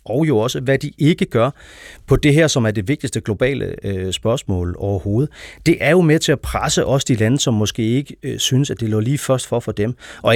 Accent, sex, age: native, male, 30-49